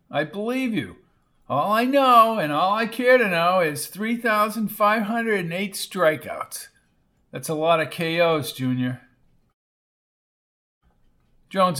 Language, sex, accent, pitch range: English, male, American, 145-200 Hz